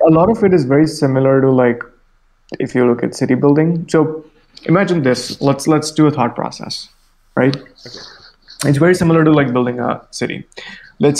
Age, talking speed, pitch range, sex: 20-39, 180 wpm, 120-150 Hz, male